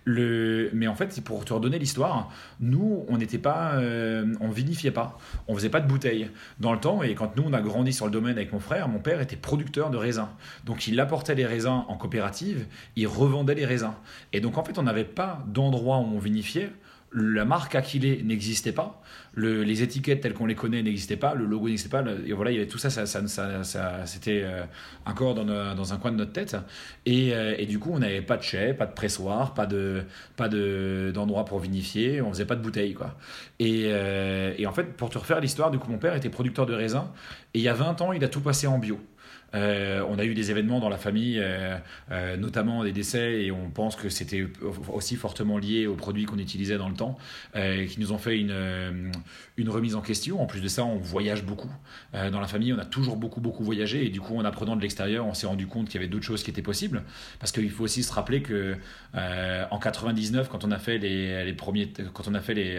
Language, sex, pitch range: French, male, 100-125 Hz